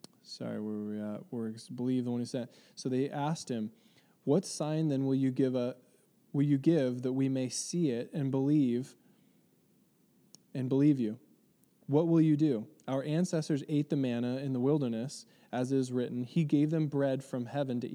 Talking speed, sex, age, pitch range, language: 195 wpm, male, 20-39, 115-140 Hz, English